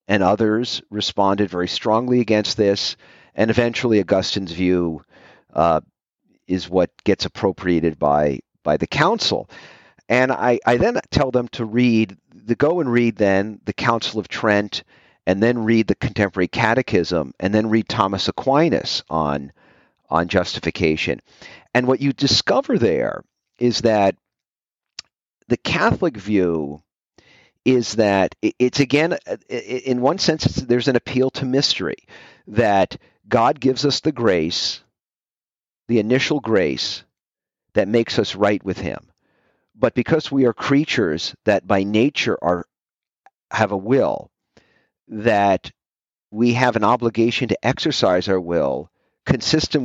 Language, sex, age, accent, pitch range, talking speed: English, male, 50-69, American, 95-125 Hz, 135 wpm